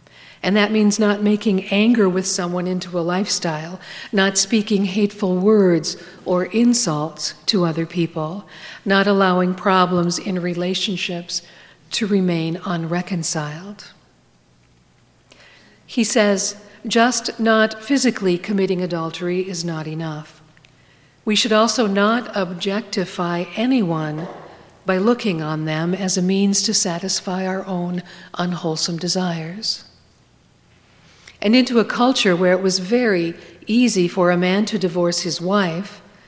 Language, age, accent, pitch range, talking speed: English, 50-69, American, 175-210 Hz, 120 wpm